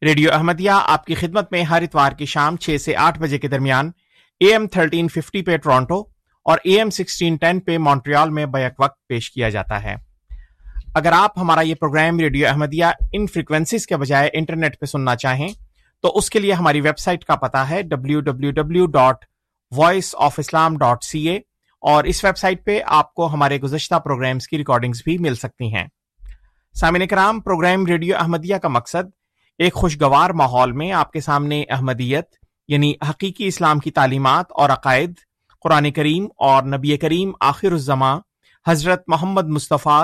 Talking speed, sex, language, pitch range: 160 wpm, male, Urdu, 140-175 Hz